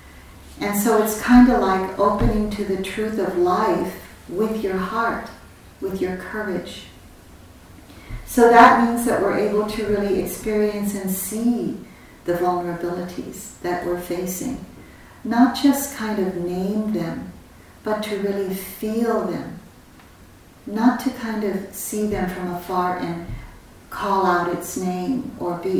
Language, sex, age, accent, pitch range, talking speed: English, female, 50-69, American, 175-220 Hz, 140 wpm